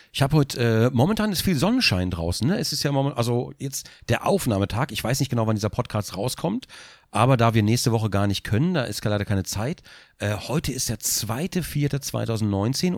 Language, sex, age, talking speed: German, male, 40-59, 205 wpm